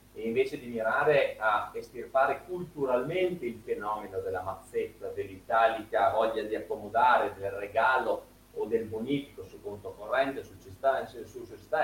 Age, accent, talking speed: 30-49, native, 130 wpm